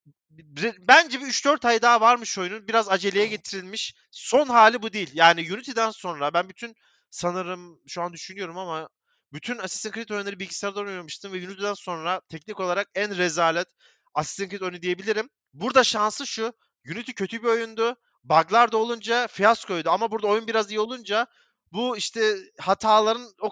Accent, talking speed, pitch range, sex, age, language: native, 160 wpm, 170-220 Hz, male, 30-49, Turkish